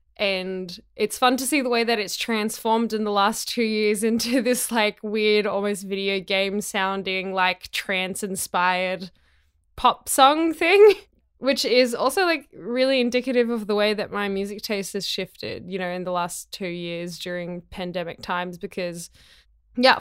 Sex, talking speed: female, 170 wpm